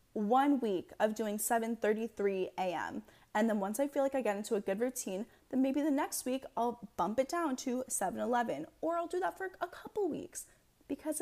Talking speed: 205 wpm